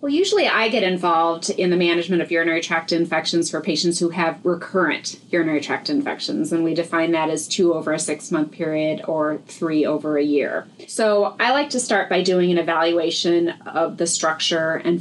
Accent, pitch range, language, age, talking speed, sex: American, 160-180 Hz, English, 30-49, 190 wpm, female